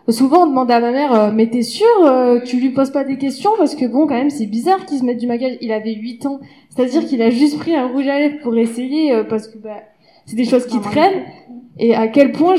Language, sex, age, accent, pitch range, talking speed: French, female, 20-39, French, 225-285 Hz, 260 wpm